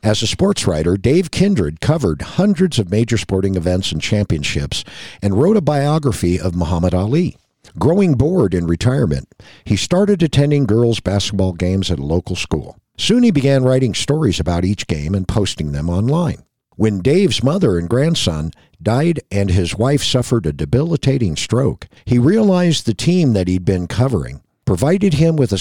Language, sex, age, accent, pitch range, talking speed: English, male, 50-69, American, 90-140 Hz, 170 wpm